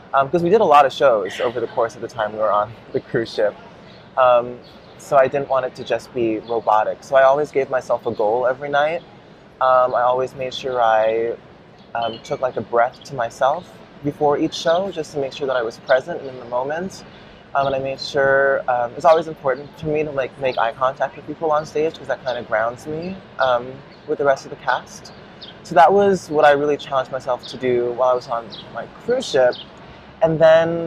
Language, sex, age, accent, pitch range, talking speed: English, male, 20-39, American, 120-150 Hz, 230 wpm